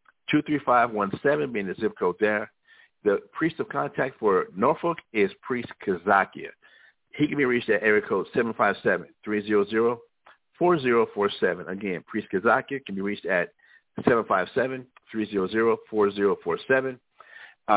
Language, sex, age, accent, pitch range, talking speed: English, male, 50-69, American, 100-130 Hz, 150 wpm